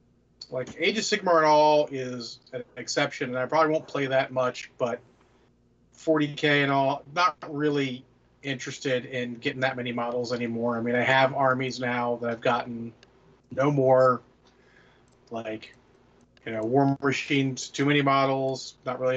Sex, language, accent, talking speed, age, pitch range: male, English, American, 155 wpm, 30-49, 125-140 Hz